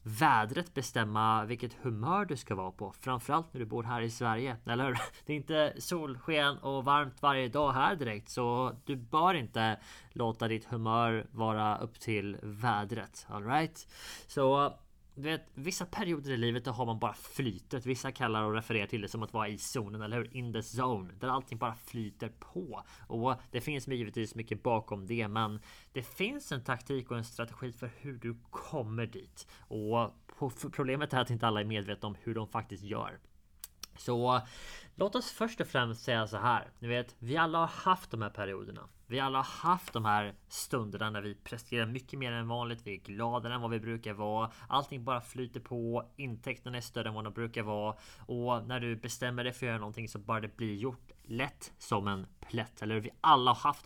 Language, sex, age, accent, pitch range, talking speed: Swedish, male, 20-39, Norwegian, 110-135 Hz, 195 wpm